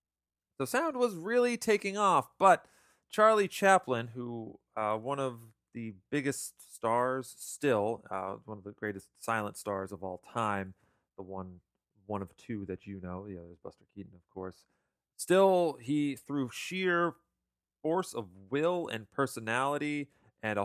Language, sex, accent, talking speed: English, male, American, 150 wpm